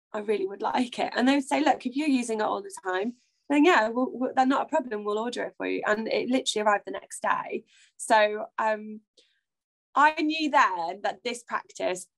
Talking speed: 210 wpm